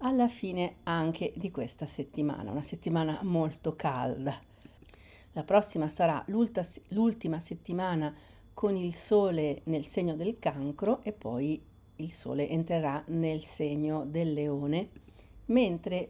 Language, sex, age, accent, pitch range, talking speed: Italian, female, 40-59, native, 155-200 Hz, 120 wpm